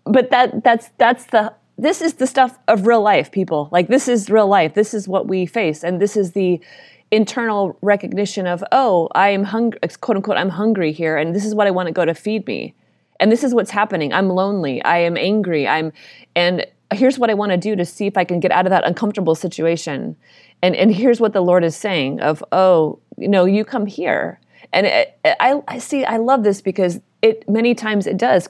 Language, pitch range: English, 170-215 Hz